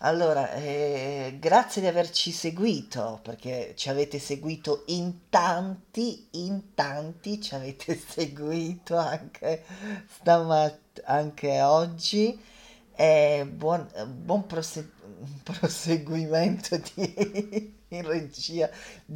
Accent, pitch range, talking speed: native, 135-175 Hz, 85 wpm